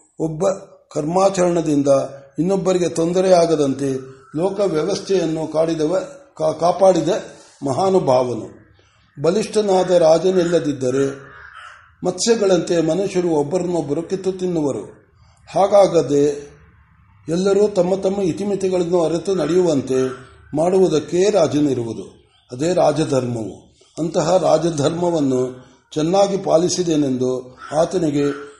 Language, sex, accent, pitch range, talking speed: Kannada, male, native, 145-185 Hz, 65 wpm